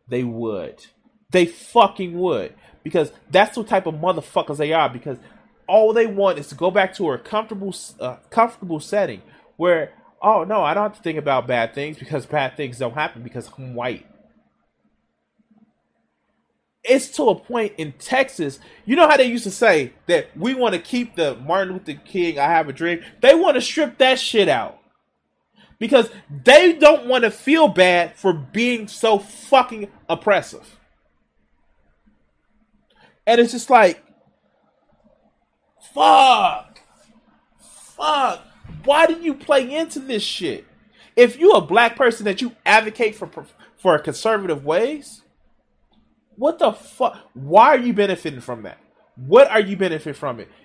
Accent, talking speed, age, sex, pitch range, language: American, 155 wpm, 20-39, male, 165-245 Hz, English